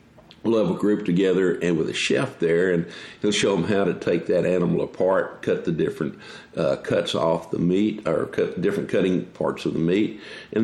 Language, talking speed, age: English, 210 wpm, 50-69